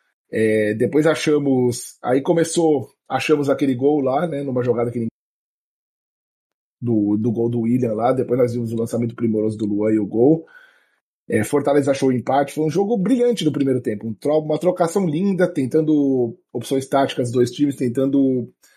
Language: Portuguese